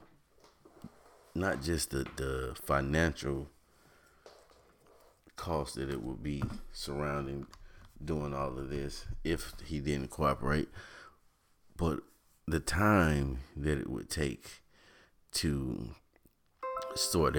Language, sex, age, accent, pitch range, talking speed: English, male, 30-49, American, 70-80 Hz, 95 wpm